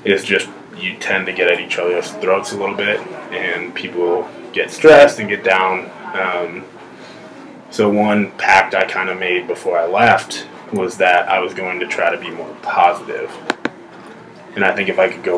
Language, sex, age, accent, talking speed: English, male, 20-39, American, 190 wpm